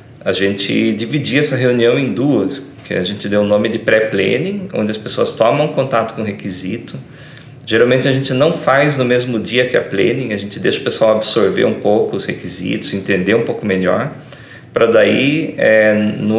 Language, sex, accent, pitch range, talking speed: Portuguese, male, Brazilian, 105-135 Hz, 190 wpm